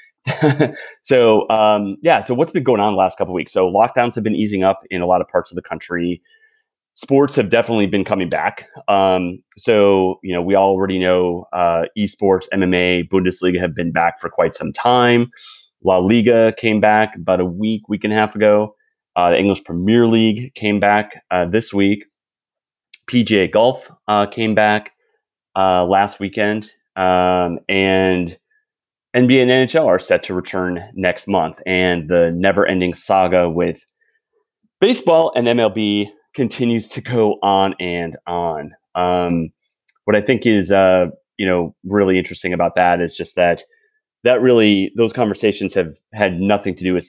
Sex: male